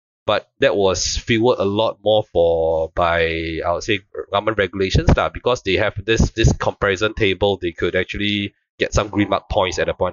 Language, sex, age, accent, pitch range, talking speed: English, male, 20-39, Malaysian, 90-115 Hz, 195 wpm